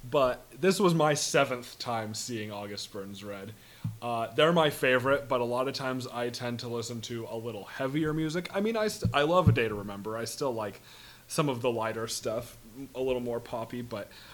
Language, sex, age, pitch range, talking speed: English, male, 30-49, 110-135 Hz, 215 wpm